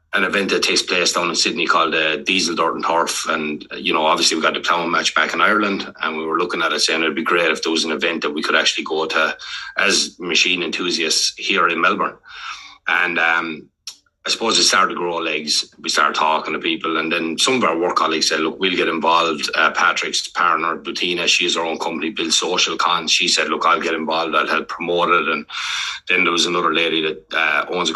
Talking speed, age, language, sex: 235 wpm, 30-49, English, male